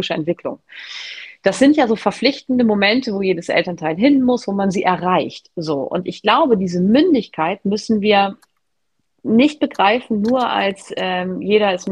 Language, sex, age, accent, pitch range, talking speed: German, female, 30-49, German, 175-230 Hz, 160 wpm